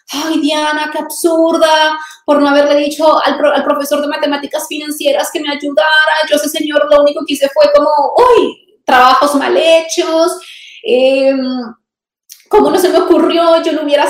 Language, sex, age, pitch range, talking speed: Spanish, female, 20-39, 245-325 Hz, 170 wpm